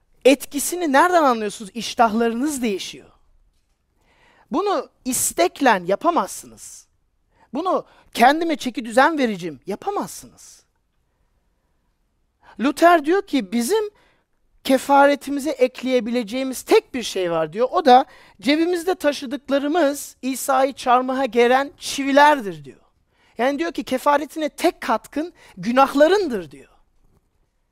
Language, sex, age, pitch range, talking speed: Turkish, male, 40-59, 225-310 Hz, 90 wpm